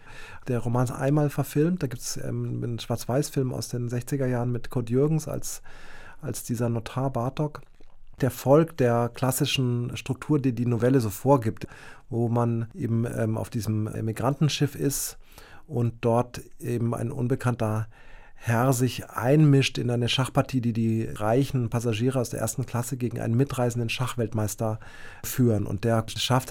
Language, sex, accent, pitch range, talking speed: German, male, German, 115-130 Hz, 150 wpm